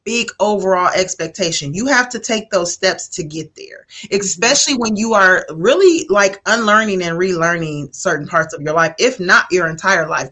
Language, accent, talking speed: English, American, 180 wpm